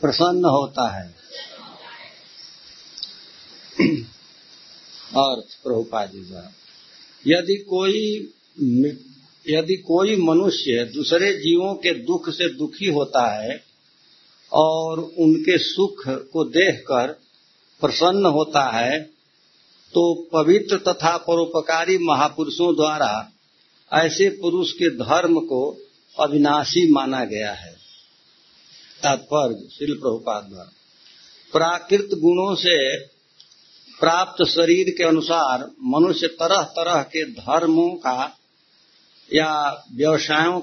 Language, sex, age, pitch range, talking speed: Hindi, male, 70-89, 155-195 Hz, 90 wpm